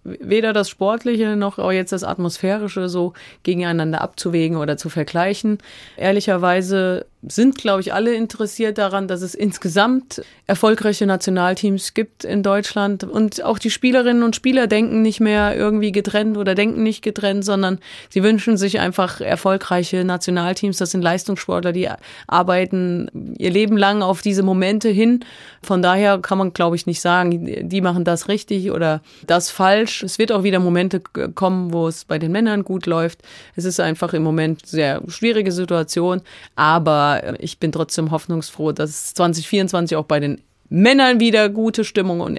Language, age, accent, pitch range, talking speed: German, 30-49, German, 180-215 Hz, 165 wpm